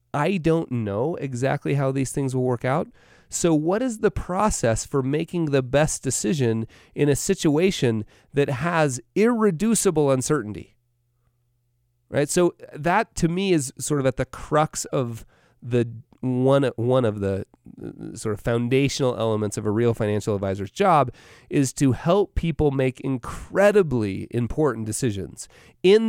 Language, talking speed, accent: English, 145 wpm, American